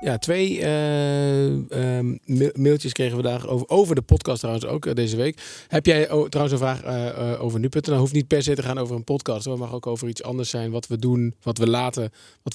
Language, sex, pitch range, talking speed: Dutch, male, 120-145 Hz, 240 wpm